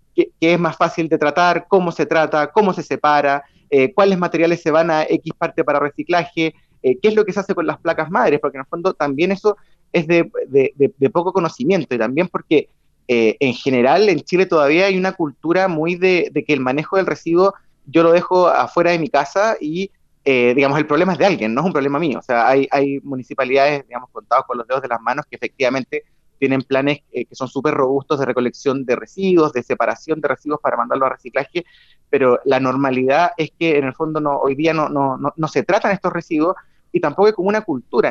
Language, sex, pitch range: Spanish, male, 140-180 Hz